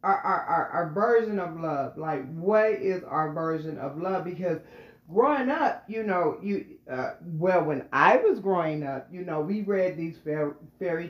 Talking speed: 180 wpm